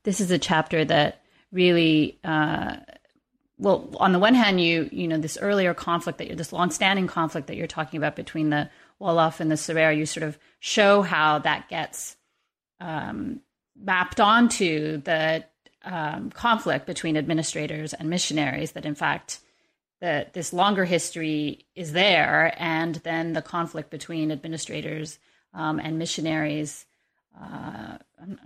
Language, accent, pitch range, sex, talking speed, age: English, American, 160-195 Hz, female, 145 wpm, 30-49